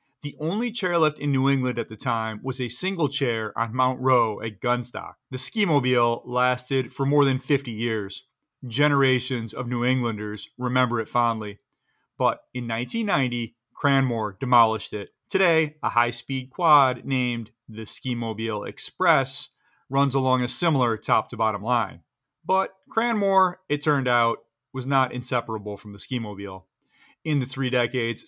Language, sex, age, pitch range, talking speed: English, male, 30-49, 115-135 Hz, 145 wpm